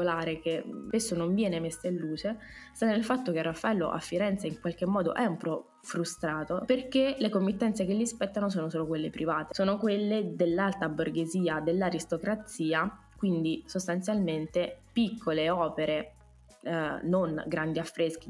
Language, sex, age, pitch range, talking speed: Italian, female, 20-39, 165-205 Hz, 145 wpm